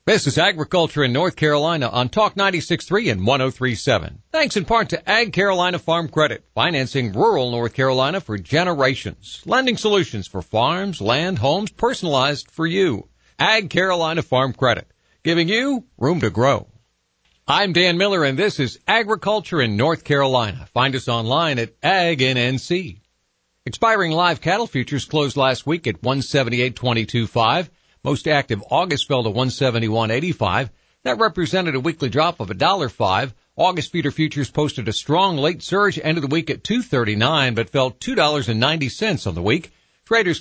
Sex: male